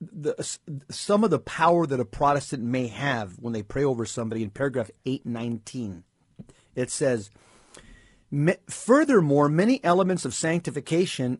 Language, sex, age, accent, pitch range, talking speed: English, male, 40-59, American, 120-155 Hz, 130 wpm